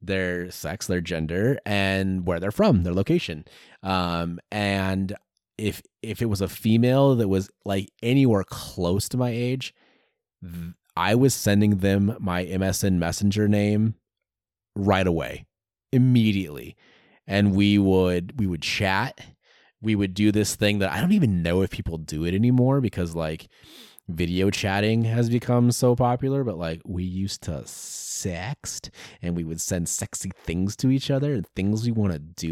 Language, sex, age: English, male, 30-49